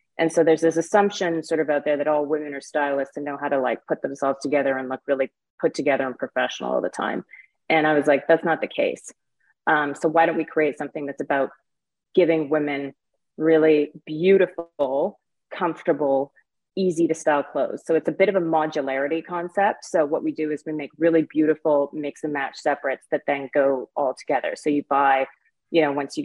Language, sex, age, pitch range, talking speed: English, female, 30-49, 140-160 Hz, 210 wpm